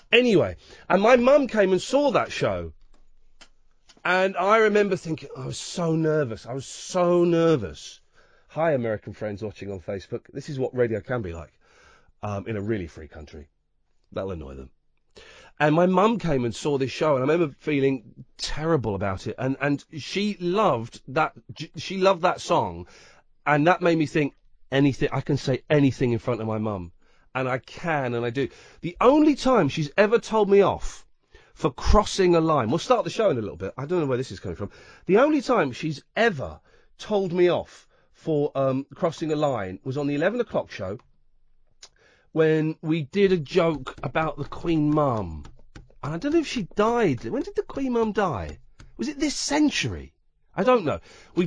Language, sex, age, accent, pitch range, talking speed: English, male, 40-59, British, 120-190 Hz, 190 wpm